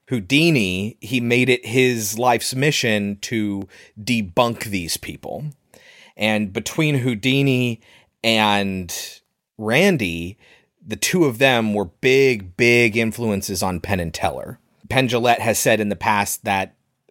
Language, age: English, 30-49